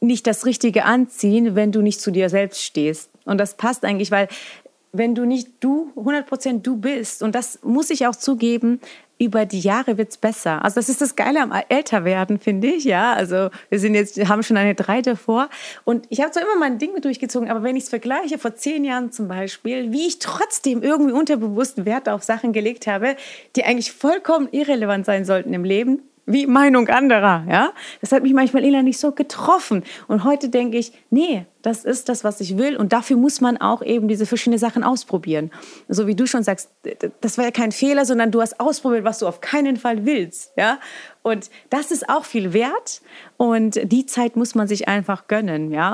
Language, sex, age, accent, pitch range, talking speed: German, female, 30-49, German, 205-265 Hz, 210 wpm